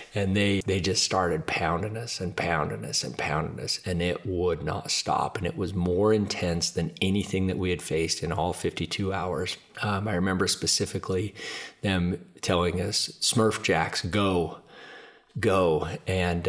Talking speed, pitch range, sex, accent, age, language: 170 wpm, 85-95 Hz, male, American, 30-49, English